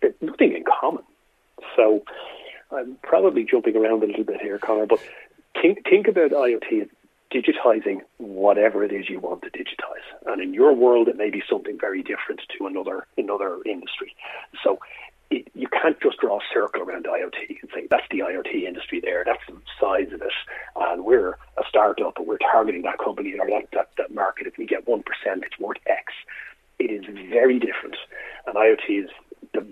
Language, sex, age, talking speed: English, male, 40-59, 190 wpm